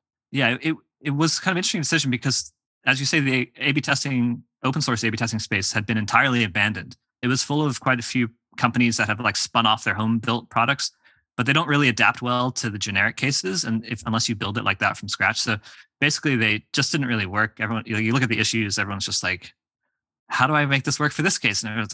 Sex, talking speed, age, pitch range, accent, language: male, 250 wpm, 20-39, 110-140 Hz, American, English